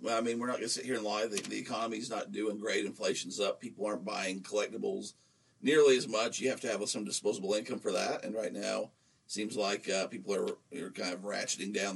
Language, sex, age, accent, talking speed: English, male, 50-69, American, 240 wpm